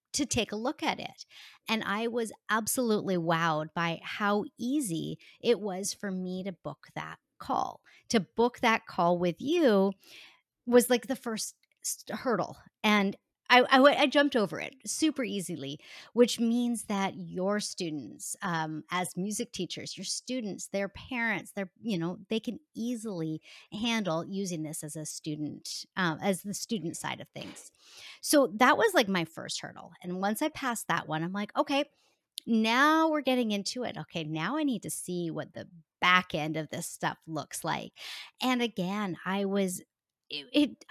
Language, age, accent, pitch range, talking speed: English, 40-59, American, 170-250 Hz, 170 wpm